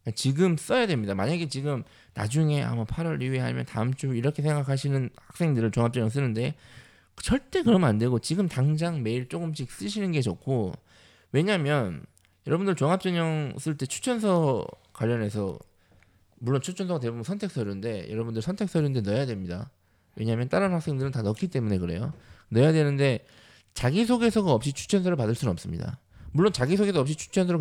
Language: Korean